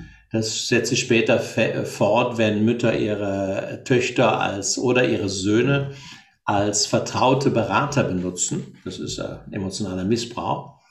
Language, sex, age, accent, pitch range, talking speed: German, male, 60-79, German, 105-130 Hz, 120 wpm